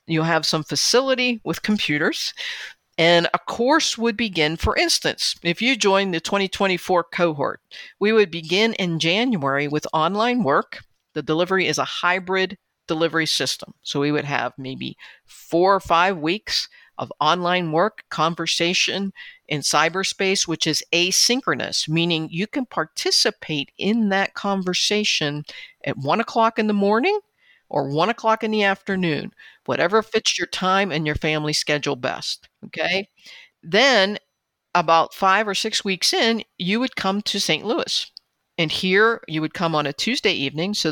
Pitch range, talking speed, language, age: 155-210 Hz, 155 wpm, English, 50-69